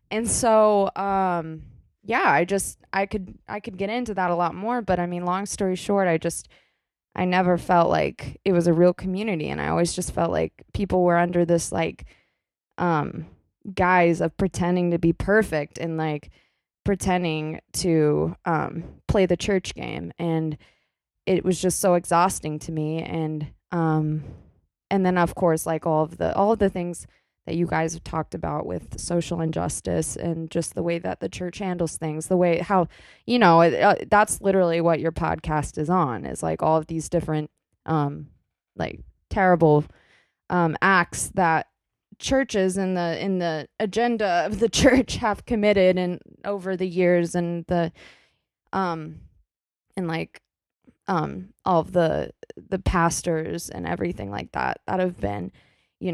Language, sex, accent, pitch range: English, female, American, 160-190 Hz